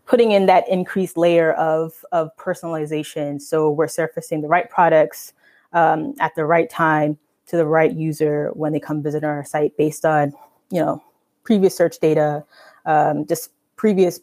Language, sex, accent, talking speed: English, female, American, 155 wpm